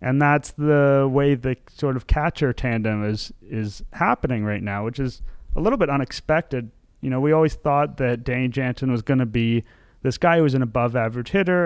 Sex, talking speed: male, 205 wpm